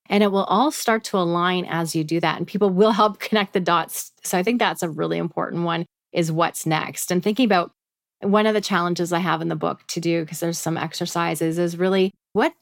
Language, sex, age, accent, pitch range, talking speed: English, female, 30-49, American, 165-210 Hz, 240 wpm